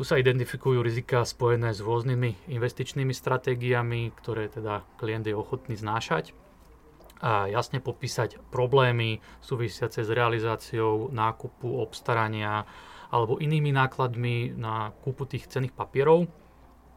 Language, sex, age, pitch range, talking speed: Slovak, male, 30-49, 110-125 Hz, 115 wpm